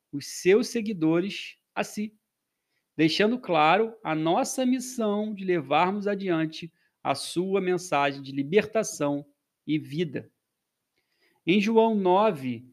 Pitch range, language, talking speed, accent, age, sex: 145-205 Hz, Portuguese, 110 wpm, Brazilian, 40-59, male